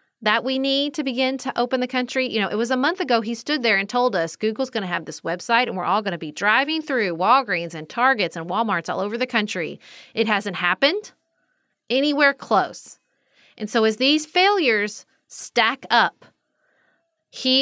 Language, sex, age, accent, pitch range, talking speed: English, female, 30-49, American, 185-235 Hz, 200 wpm